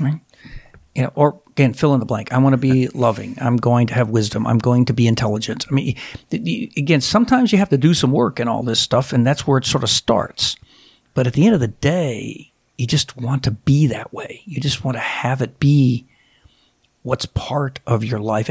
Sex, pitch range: male, 125-160 Hz